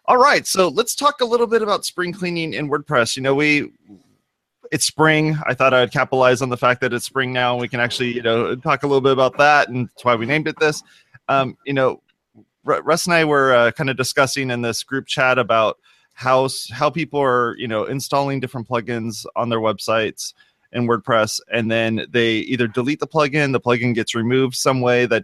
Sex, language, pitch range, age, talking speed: male, English, 115-145 Hz, 30-49, 220 wpm